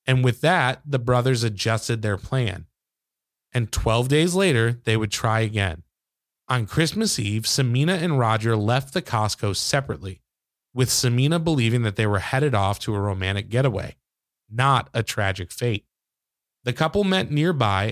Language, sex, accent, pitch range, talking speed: English, male, American, 110-140 Hz, 155 wpm